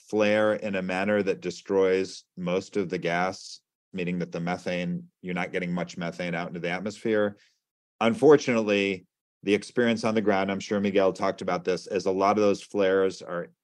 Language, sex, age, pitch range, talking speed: English, male, 30-49, 90-115 Hz, 185 wpm